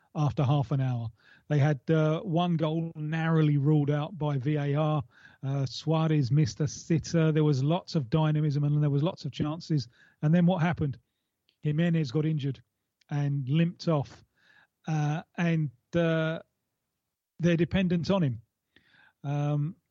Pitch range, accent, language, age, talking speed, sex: 145-170 Hz, British, English, 30-49, 145 wpm, male